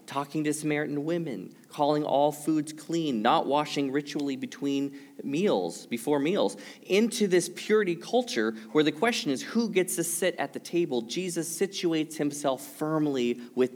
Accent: American